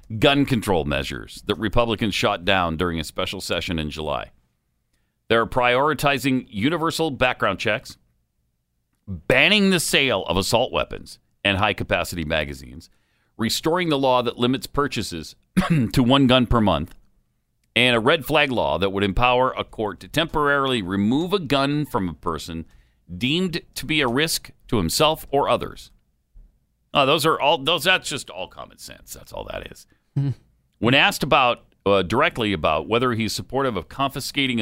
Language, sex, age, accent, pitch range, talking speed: English, male, 50-69, American, 85-140 Hz, 160 wpm